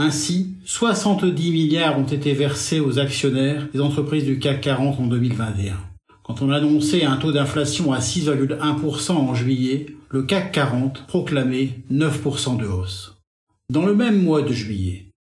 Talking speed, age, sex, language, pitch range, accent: 150 wpm, 50-69, male, French, 135-175 Hz, French